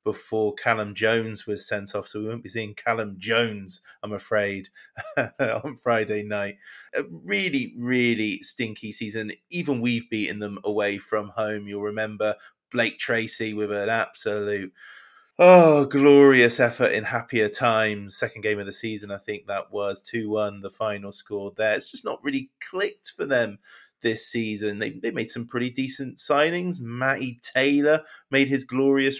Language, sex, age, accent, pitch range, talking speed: English, male, 20-39, British, 110-140 Hz, 160 wpm